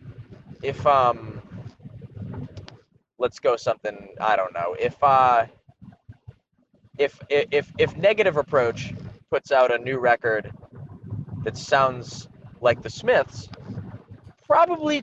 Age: 20-39